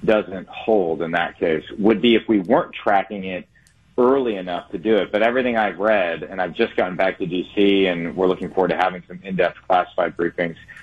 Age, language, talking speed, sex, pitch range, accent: 40-59, English, 210 wpm, male, 95-125 Hz, American